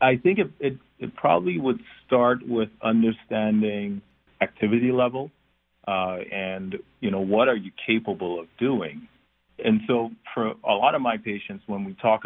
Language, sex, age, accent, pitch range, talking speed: English, male, 50-69, American, 90-120 Hz, 160 wpm